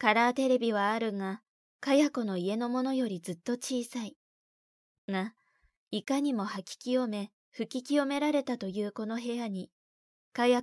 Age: 20-39